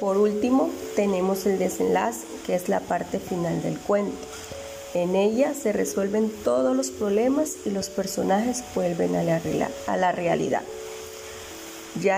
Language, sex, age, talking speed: Spanish, female, 30-49, 140 wpm